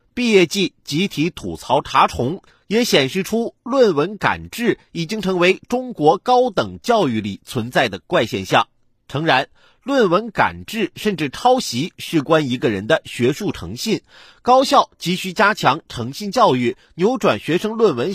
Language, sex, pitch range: Chinese, male, 150-230 Hz